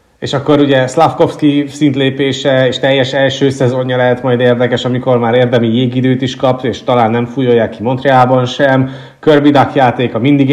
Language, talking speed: Hungarian, 170 wpm